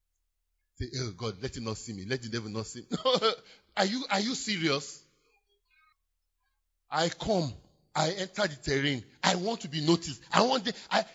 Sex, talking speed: male, 180 wpm